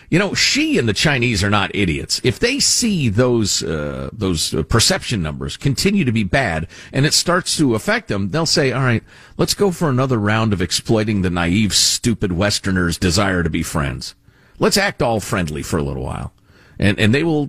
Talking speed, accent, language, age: 200 wpm, American, English, 50-69